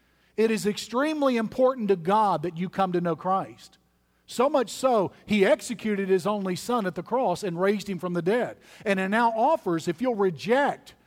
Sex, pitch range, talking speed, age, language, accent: male, 175-225 Hz, 195 wpm, 50-69, English, American